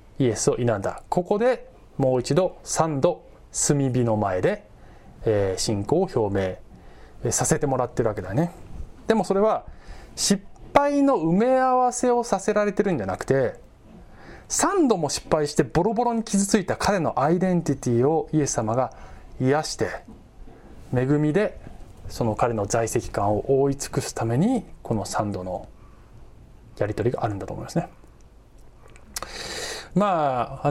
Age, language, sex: 20-39, Japanese, male